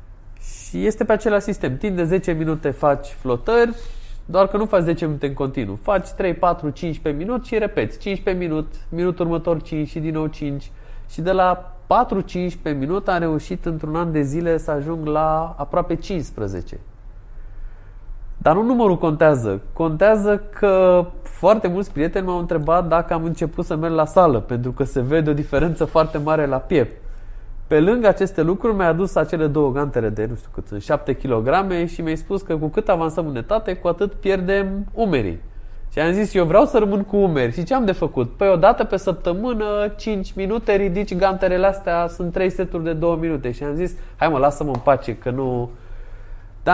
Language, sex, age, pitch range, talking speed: Romanian, male, 20-39, 140-195 Hz, 195 wpm